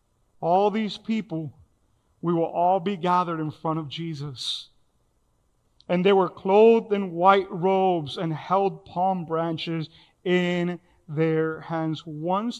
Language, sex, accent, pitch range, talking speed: English, male, American, 160-195 Hz, 130 wpm